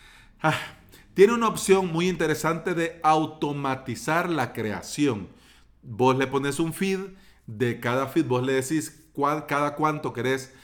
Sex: male